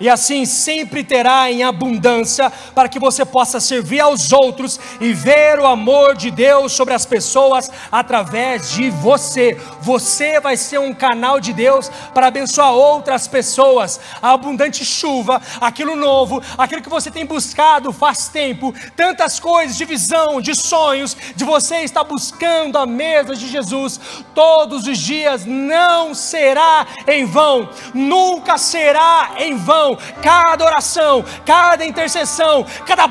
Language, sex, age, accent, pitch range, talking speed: Portuguese, male, 40-59, Brazilian, 265-325 Hz, 140 wpm